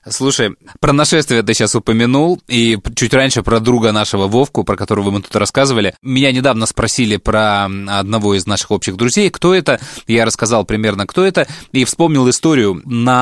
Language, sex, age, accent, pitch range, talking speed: Russian, male, 20-39, native, 105-135 Hz, 175 wpm